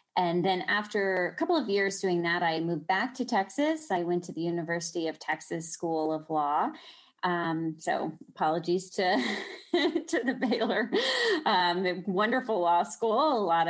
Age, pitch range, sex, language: 30-49, 165-215 Hz, female, English